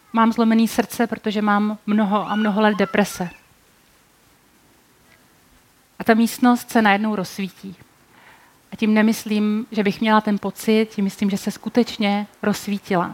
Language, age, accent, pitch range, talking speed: Czech, 40-59, native, 205-235 Hz, 135 wpm